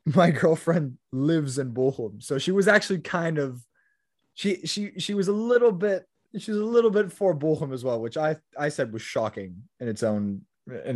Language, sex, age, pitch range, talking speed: English, male, 20-39, 110-175 Hz, 205 wpm